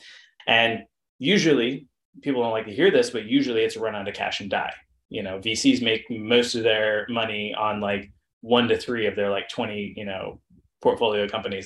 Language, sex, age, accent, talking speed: English, male, 20-39, American, 200 wpm